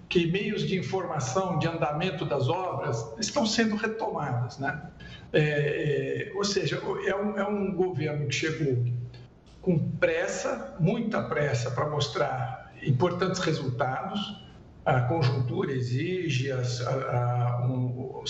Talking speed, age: 105 wpm, 60-79